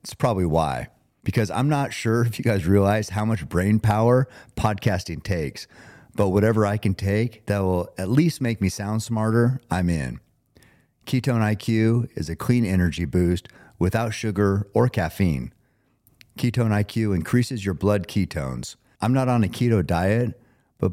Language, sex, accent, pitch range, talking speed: English, male, American, 90-115 Hz, 160 wpm